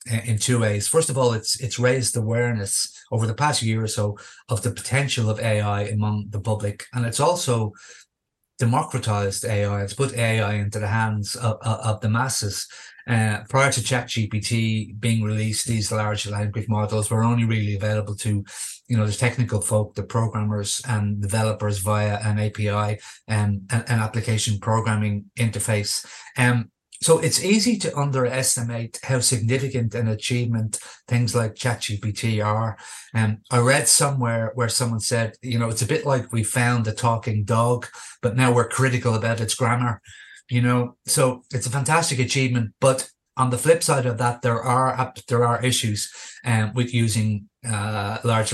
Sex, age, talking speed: male, 30-49, 170 wpm